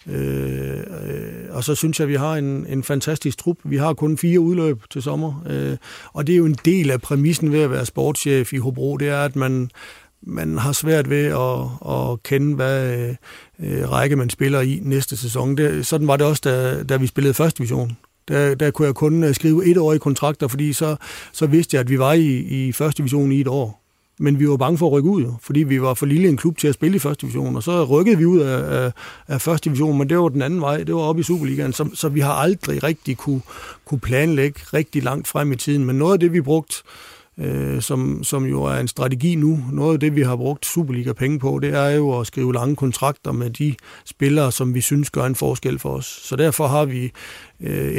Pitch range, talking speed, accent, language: 130-155 Hz, 240 wpm, native, Danish